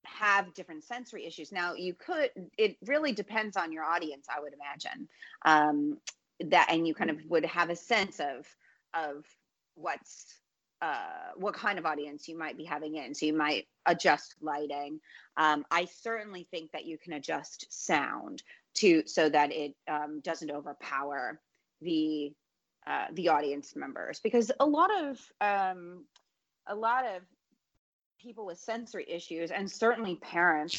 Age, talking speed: 30-49, 155 wpm